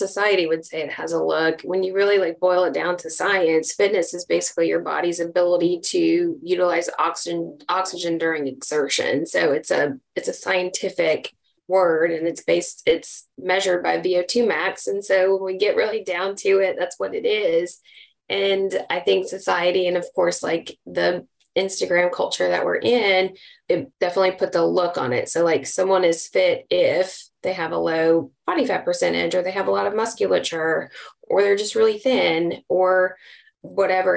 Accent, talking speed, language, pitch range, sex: American, 185 wpm, English, 175-275 Hz, female